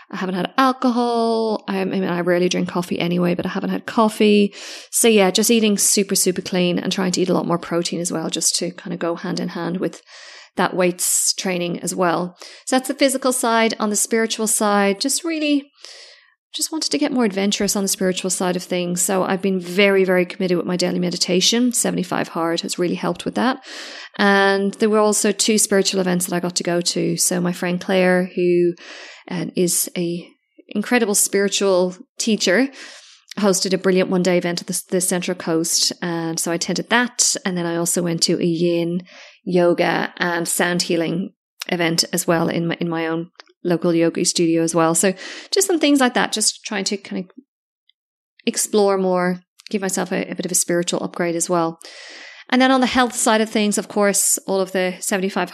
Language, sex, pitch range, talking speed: English, female, 175-220 Hz, 205 wpm